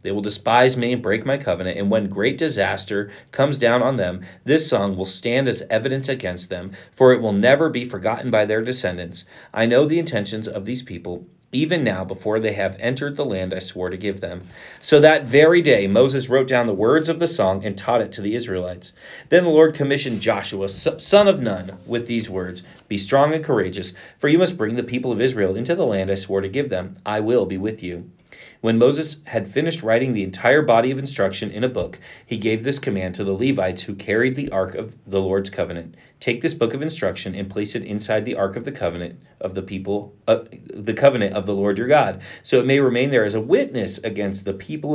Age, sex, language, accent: 40-59, male, English, American